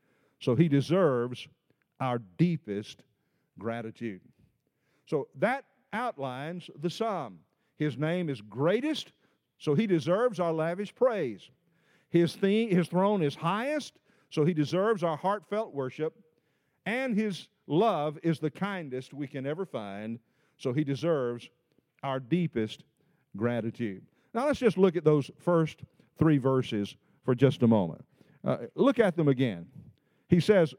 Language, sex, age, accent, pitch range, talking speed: English, male, 50-69, American, 140-195 Hz, 135 wpm